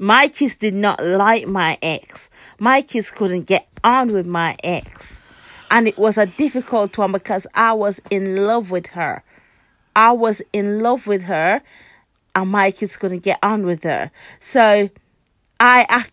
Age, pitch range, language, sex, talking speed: 30-49, 190-225 Hz, English, female, 165 wpm